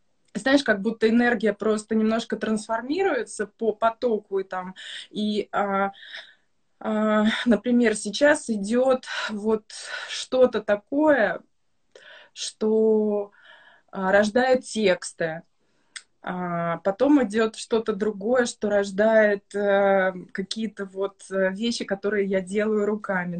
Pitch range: 195-225 Hz